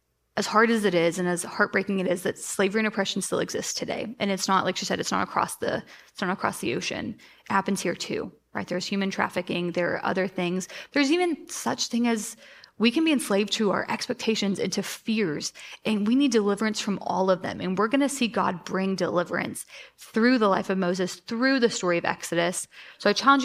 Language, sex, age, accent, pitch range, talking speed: English, female, 20-39, American, 185-225 Hz, 225 wpm